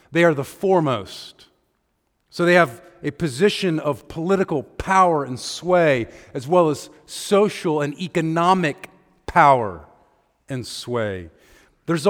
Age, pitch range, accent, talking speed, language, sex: 50-69, 145-190 Hz, American, 120 wpm, English, male